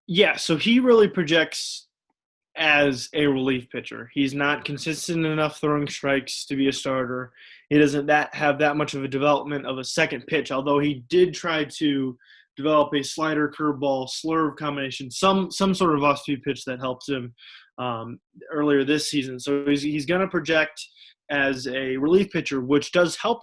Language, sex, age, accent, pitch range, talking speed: English, male, 20-39, American, 130-150 Hz, 175 wpm